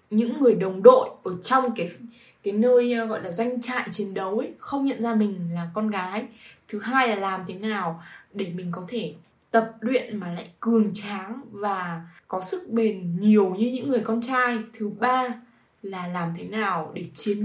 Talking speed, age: 195 wpm, 10-29